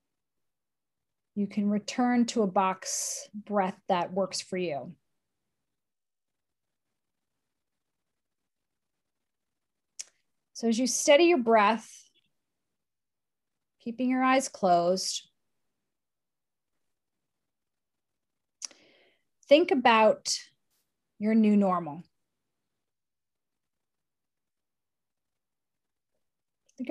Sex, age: female, 30-49